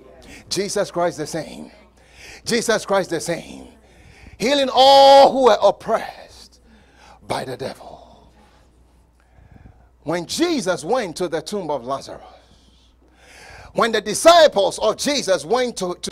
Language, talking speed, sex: English, 120 wpm, male